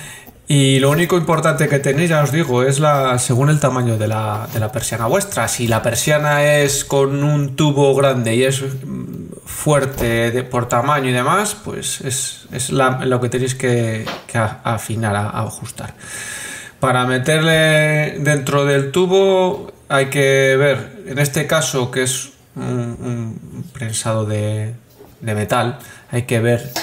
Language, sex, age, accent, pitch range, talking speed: Spanish, male, 20-39, Spanish, 115-135 Hz, 160 wpm